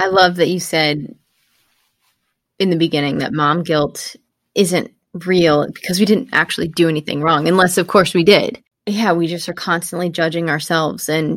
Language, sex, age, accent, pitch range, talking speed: English, female, 20-39, American, 175-215 Hz, 175 wpm